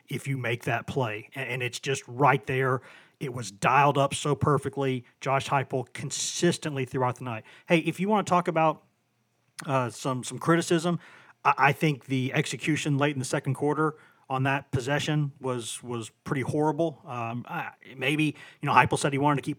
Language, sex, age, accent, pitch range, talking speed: English, male, 30-49, American, 130-150 Hz, 185 wpm